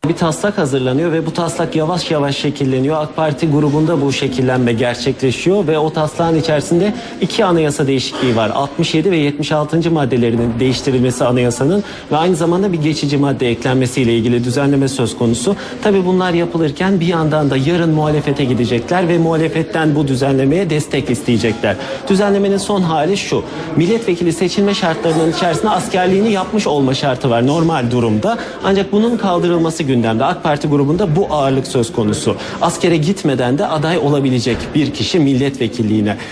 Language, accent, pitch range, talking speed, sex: Turkish, native, 135-185 Hz, 145 wpm, male